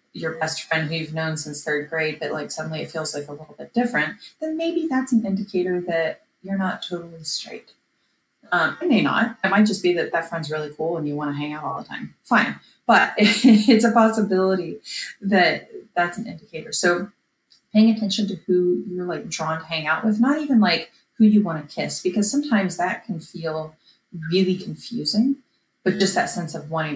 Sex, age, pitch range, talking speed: female, 30-49, 165-225 Hz, 205 wpm